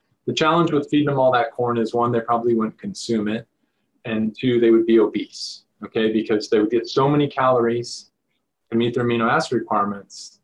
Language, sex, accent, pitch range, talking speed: English, male, American, 110-130 Hz, 200 wpm